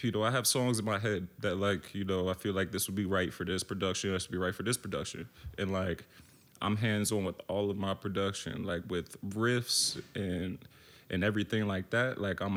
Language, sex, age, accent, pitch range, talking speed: English, male, 20-39, American, 95-120 Hz, 235 wpm